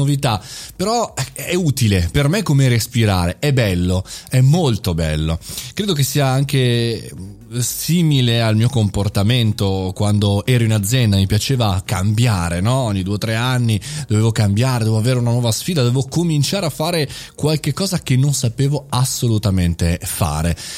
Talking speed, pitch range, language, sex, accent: 145 wpm, 105-150 Hz, Italian, male, native